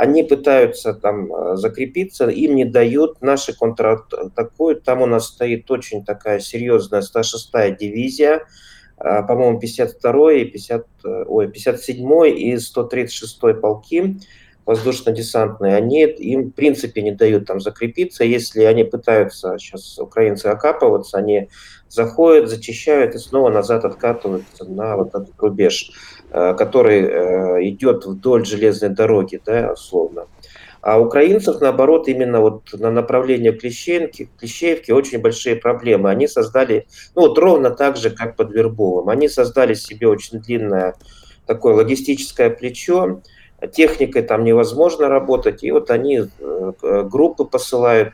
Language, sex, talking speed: Russian, male, 120 wpm